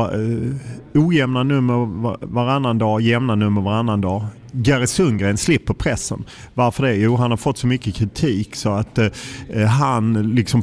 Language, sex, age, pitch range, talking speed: English, male, 30-49, 105-125 Hz, 145 wpm